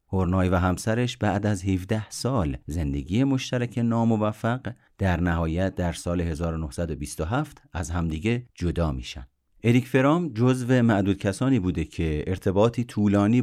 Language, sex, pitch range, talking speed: Persian, male, 85-115 Hz, 125 wpm